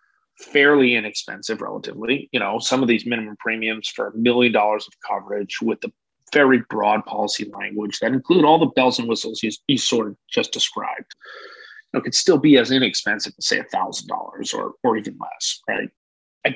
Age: 30-49